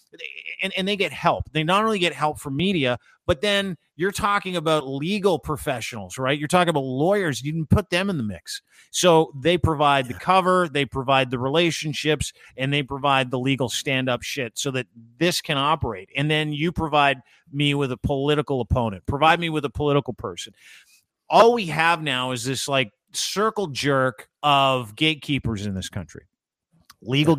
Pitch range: 130-165 Hz